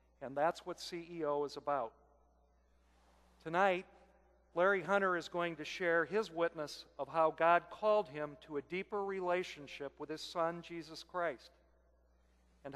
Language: English